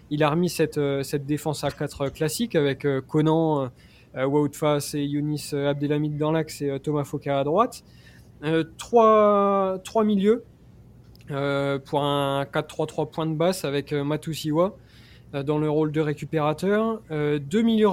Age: 20-39